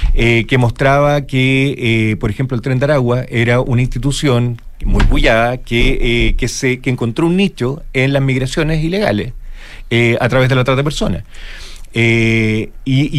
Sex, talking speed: male, 165 wpm